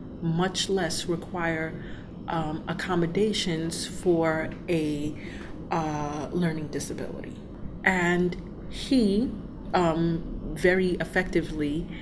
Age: 30-49